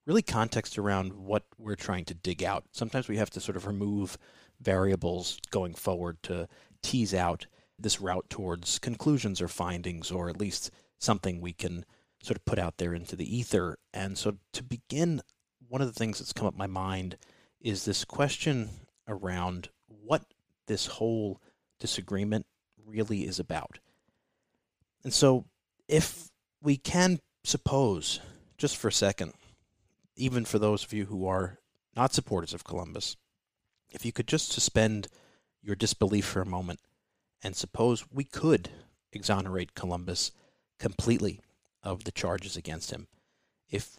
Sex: male